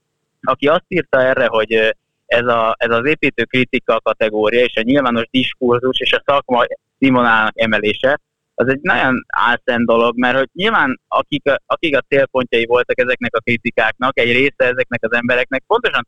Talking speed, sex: 160 wpm, male